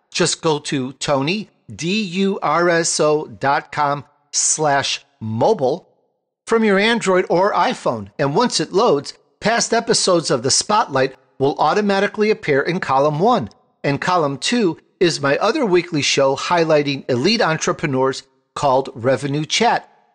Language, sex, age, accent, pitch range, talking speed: English, male, 50-69, American, 140-205 Hz, 115 wpm